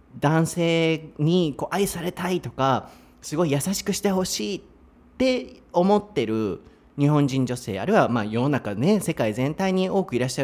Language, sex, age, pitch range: Japanese, male, 30-49, 125-200 Hz